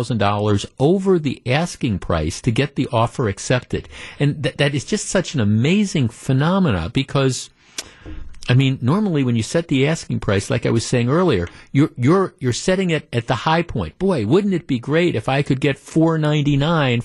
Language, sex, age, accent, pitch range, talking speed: English, male, 50-69, American, 110-150 Hz, 185 wpm